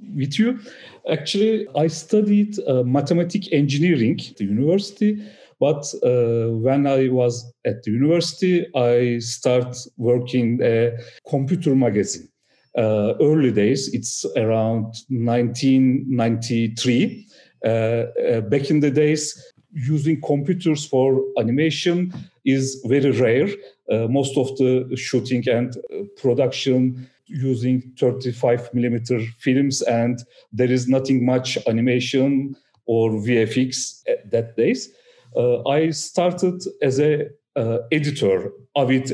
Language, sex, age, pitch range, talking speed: English, male, 50-69, 120-150 Hz, 110 wpm